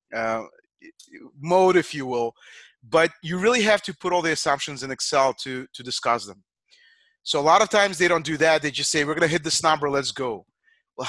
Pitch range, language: 135-175 Hz, English